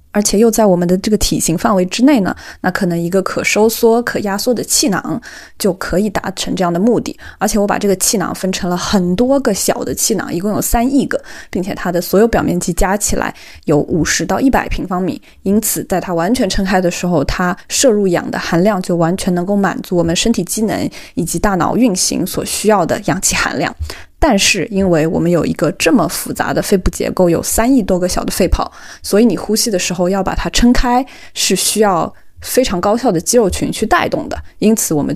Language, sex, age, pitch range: Chinese, female, 20-39, 180-225 Hz